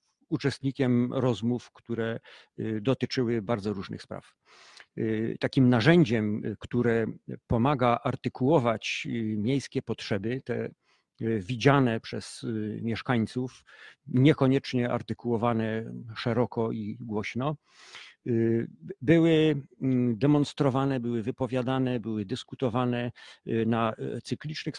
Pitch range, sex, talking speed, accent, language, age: 110-130 Hz, male, 75 wpm, native, Polish, 50-69